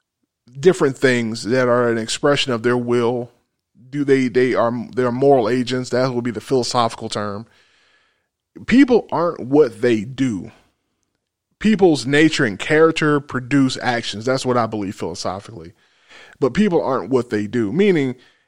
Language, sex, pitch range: English, male, 120-150 Hz